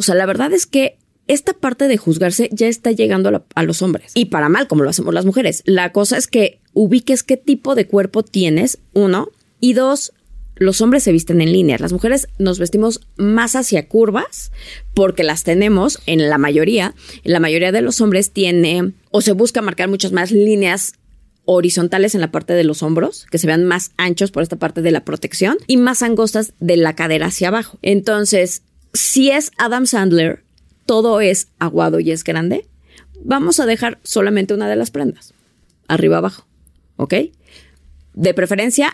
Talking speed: 185 wpm